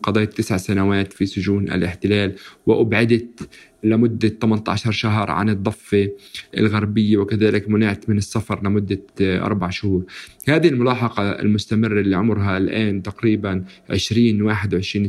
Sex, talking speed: male, 105 wpm